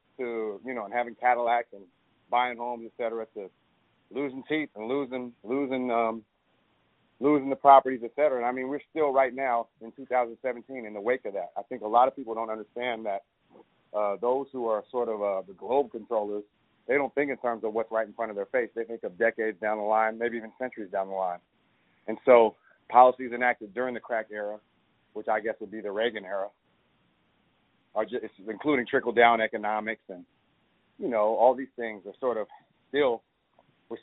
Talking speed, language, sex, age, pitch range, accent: 200 wpm, English, male, 40-59, 110-125 Hz, American